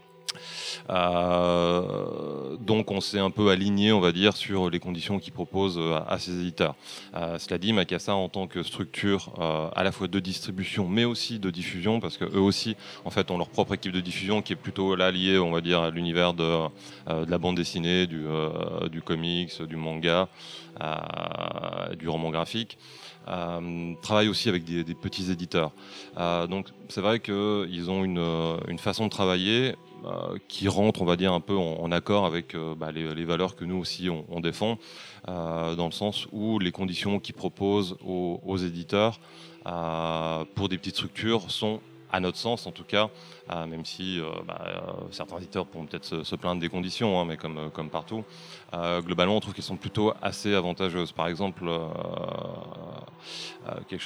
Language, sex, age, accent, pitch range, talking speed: French, male, 30-49, French, 85-100 Hz, 195 wpm